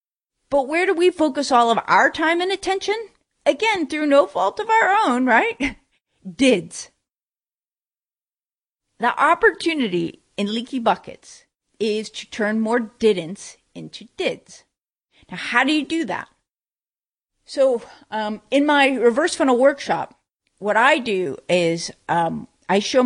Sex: female